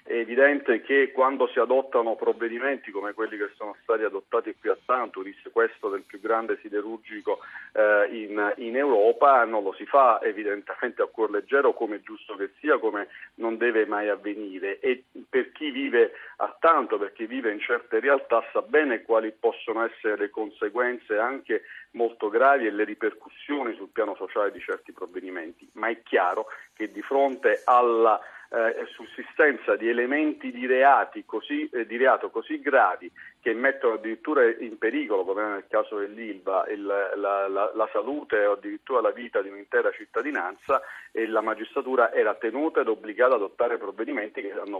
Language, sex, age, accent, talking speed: Italian, male, 40-59, native, 165 wpm